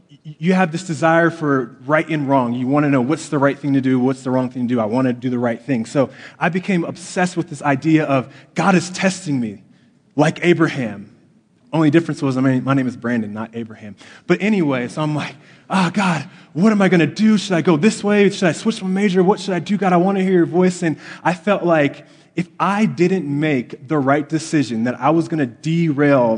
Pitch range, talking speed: 135-175 Hz, 240 wpm